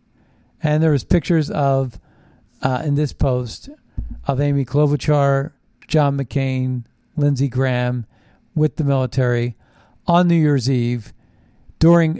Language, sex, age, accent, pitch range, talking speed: English, male, 50-69, American, 125-150 Hz, 120 wpm